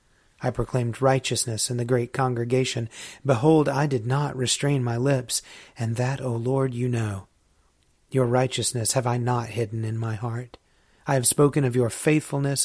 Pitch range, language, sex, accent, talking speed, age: 115-135 Hz, English, male, American, 165 wpm, 40-59